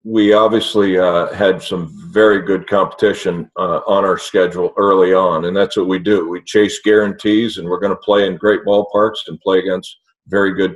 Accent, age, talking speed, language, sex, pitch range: American, 50-69, 195 wpm, English, male, 95-120 Hz